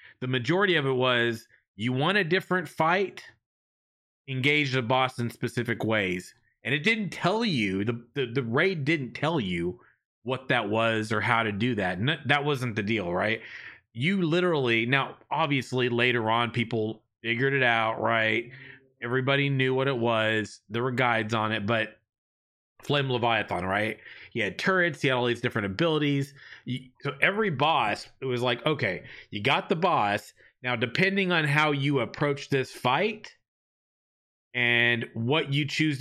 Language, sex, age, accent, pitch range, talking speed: English, male, 30-49, American, 110-140 Hz, 165 wpm